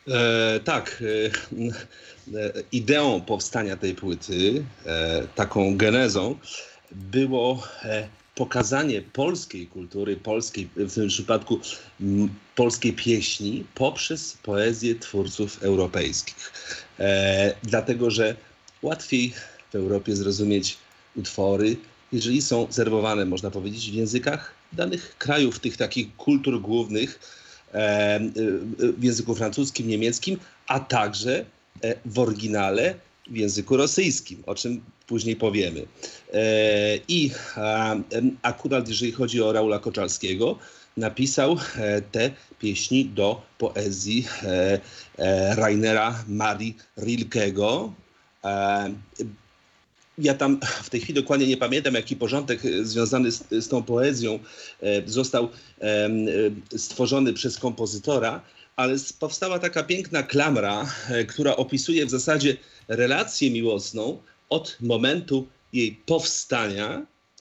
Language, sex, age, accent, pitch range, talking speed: Polish, male, 40-59, native, 105-130 Hz, 100 wpm